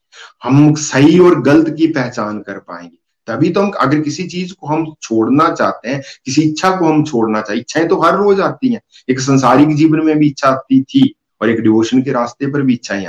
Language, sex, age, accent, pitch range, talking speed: Hindi, male, 50-69, native, 120-160 Hz, 220 wpm